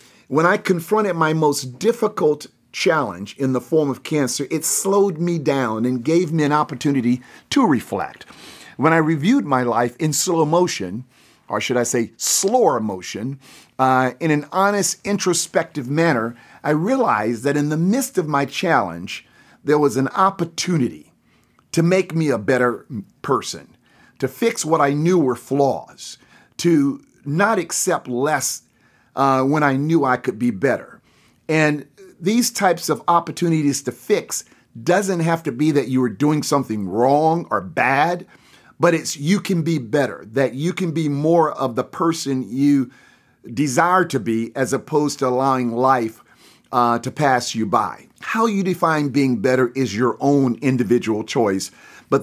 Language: English